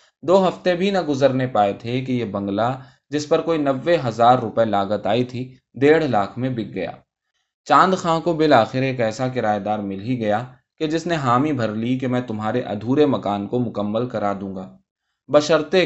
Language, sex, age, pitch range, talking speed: Urdu, male, 20-39, 110-145 Hz, 195 wpm